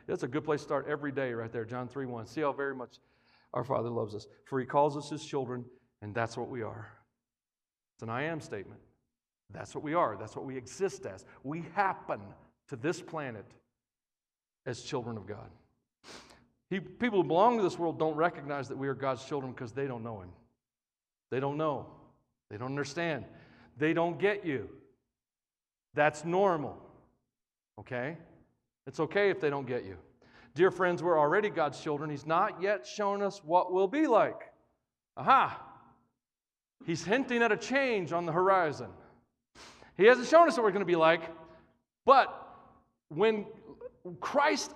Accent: American